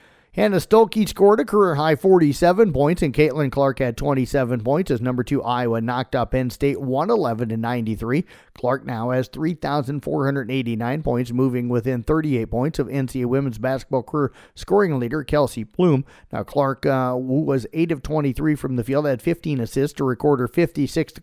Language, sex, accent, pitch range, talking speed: English, male, American, 125-150 Hz, 165 wpm